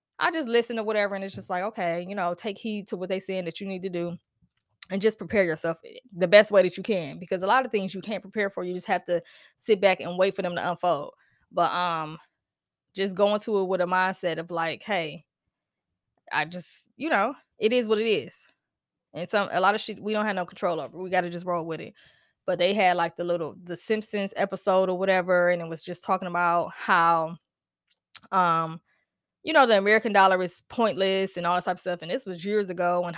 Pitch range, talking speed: 175-210 Hz, 240 wpm